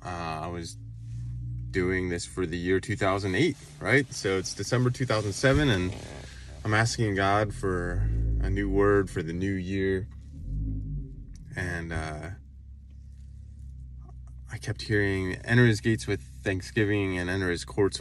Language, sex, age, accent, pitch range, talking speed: English, male, 20-39, American, 85-110 Hz, 135 wpm